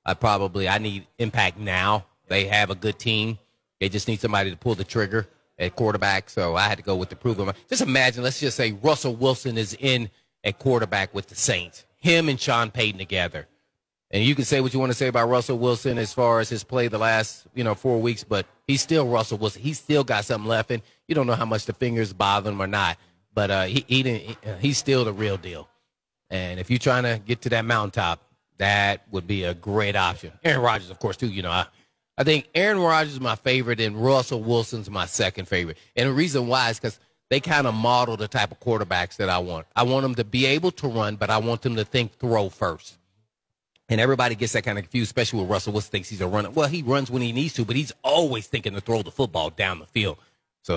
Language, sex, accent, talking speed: English, male, American, 245 wpm